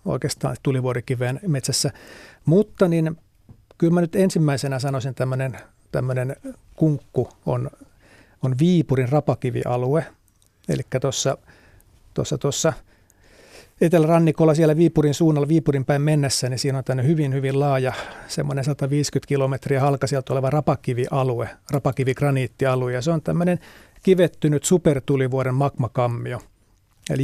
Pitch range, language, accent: 130-155 Hz, Finnish, native